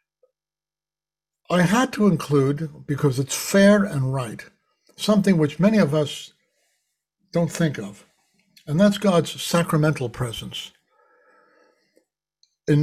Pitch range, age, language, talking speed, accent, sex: 140-195 Hz, 60-79, English, 110 wpm, American, male